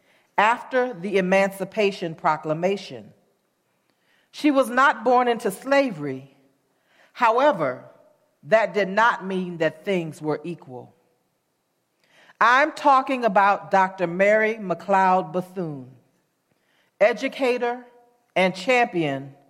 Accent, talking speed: American, 90 wpm